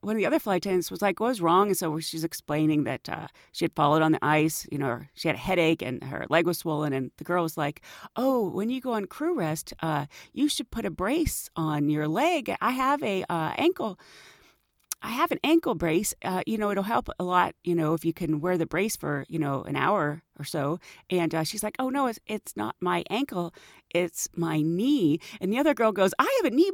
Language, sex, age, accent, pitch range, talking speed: English, female, 40-59, American, 160-260 Hz, 245 wpm